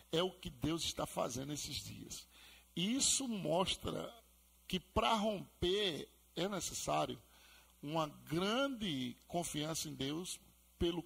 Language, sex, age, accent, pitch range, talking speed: Portuguese, male, 50-69, Brazilian, 160-215 Hz, 115 wpm